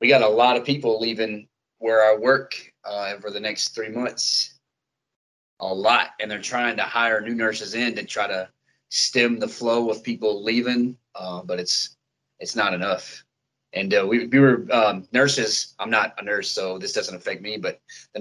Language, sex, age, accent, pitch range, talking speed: English, male, 30-49, American, 90-120 Hz, 195 wpm